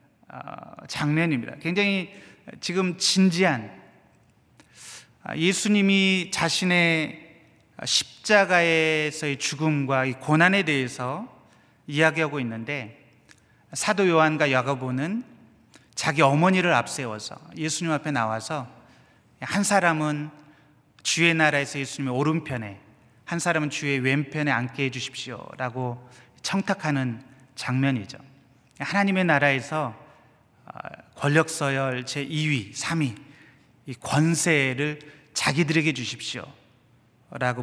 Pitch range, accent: 130-165 Hz, native